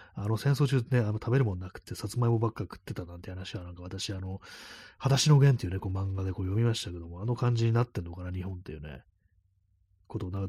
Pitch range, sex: 95-120 Hz, male